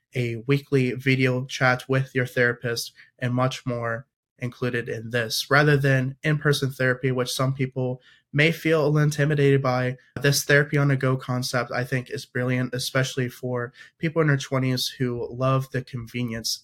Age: 20-39